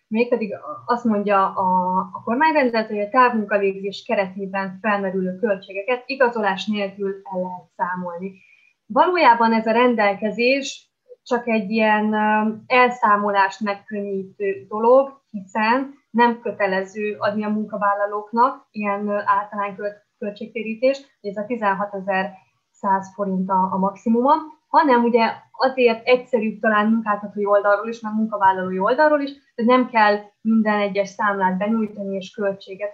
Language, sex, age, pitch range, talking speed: Hungarian, female, 20-39, 195-225 Hz, 120 wpm